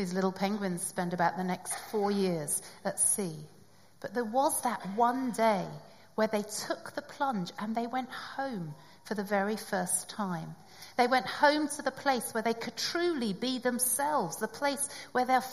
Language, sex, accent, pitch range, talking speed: English, female, British, 190-240 Hz, 180 wpm